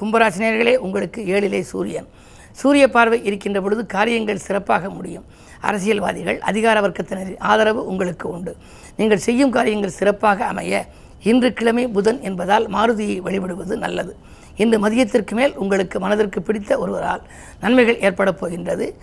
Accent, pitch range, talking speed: native, 190-225 Hz, 125 wpm